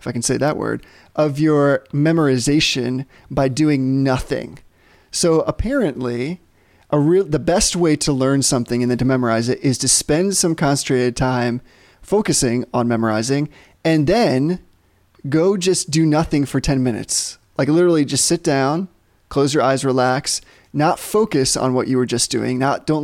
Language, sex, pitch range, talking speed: English, male, 130-165 Hz, 160 wpm